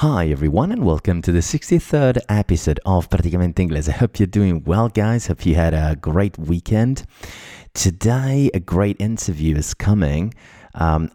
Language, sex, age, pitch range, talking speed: Italian, male, 30-49, 80-95 Hz, 160 wpm